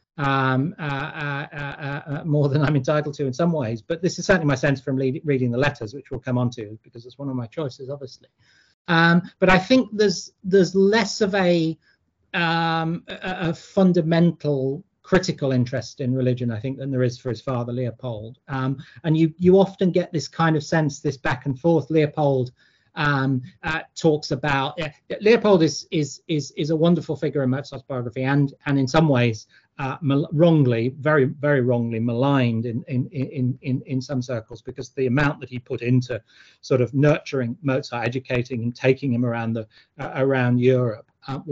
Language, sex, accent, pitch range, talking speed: English, male, British, 130-165 Hz, 190 wpm